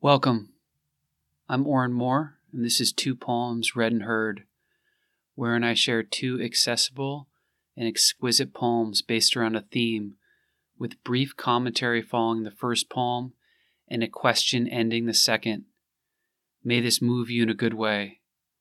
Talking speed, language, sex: 145 wpm, English, male